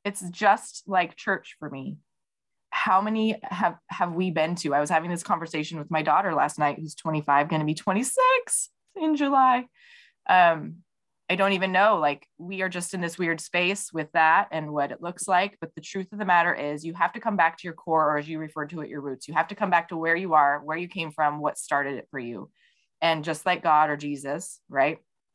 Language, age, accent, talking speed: English, 20-39, American, 235 wpm